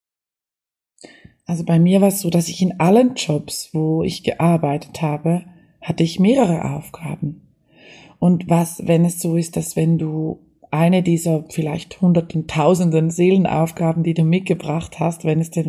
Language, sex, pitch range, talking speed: German, female, 165-200 Hz, 155 wpm